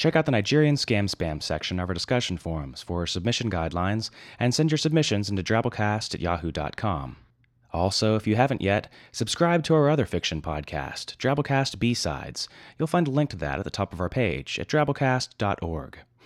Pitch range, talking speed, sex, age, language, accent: 85-130 Hz, 180 wpm, male, 30-49, English, American